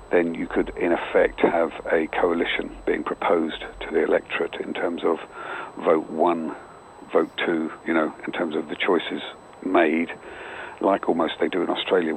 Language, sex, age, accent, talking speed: English, male, 50-69, British, 170 wpm